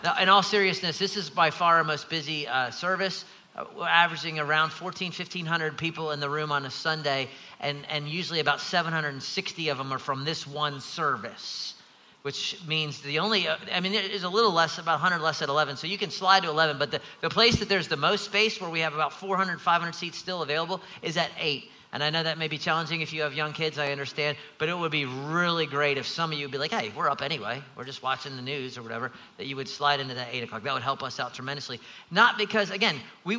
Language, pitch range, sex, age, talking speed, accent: English, 140-180 Hz, male, 40-59, 250 wpm, American